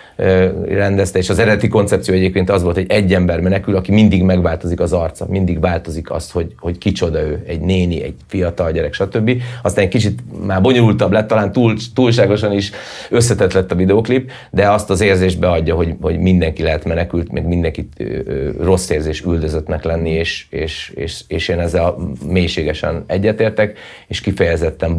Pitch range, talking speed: 85-105 Hz, 170 wpm